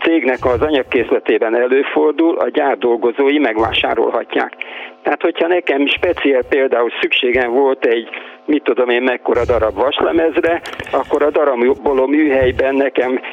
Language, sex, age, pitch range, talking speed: Hungarian, male, 50-69, 120-180 Hz, 115 wpm